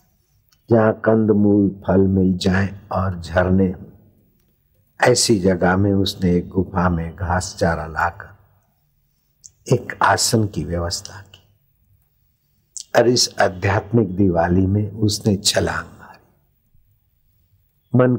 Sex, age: male, 60-79